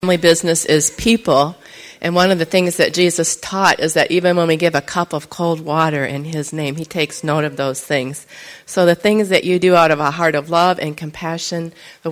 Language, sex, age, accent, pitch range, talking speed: English, female, 40-59, American, 155-180 Hz, 235 wpm